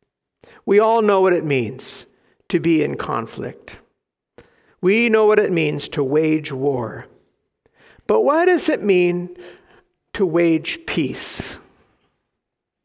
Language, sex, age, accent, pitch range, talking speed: English, male, 50-69, American, 150-195 Hz, 120 wpm